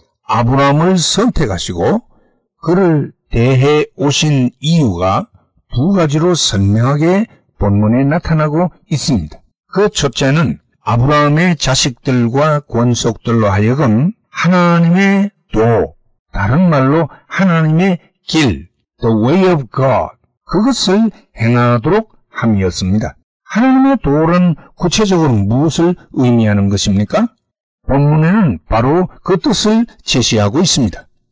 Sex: male